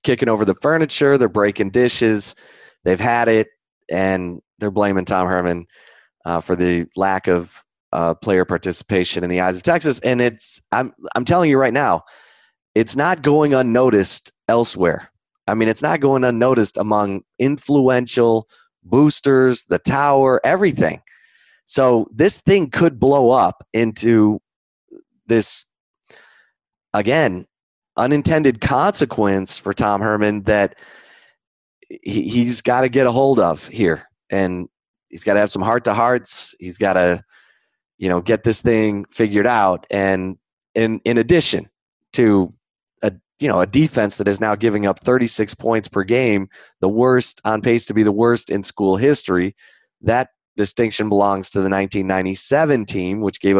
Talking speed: 150 wpm